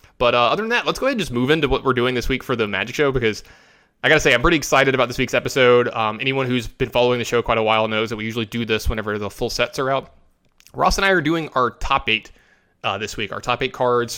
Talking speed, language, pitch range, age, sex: 295 wpm, English, 110-145 Hz, 20-39, male